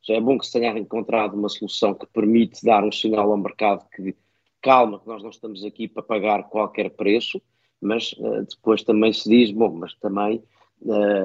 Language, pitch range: Portuguese, 105-120 Hz